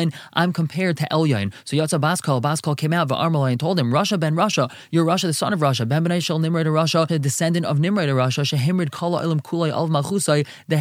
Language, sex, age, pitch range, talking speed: English, male, 20-39, 145-180 Hz, 215 wpm